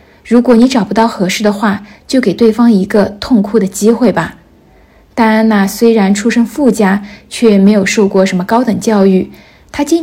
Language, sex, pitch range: Chinese, female, 205-240 Hz